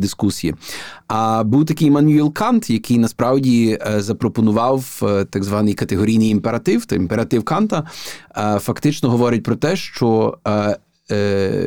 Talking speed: 135 wpm